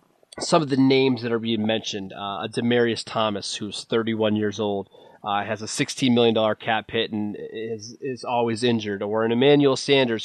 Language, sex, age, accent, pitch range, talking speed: English, male, 20-39, American, 115-145 Hz, 185 wpm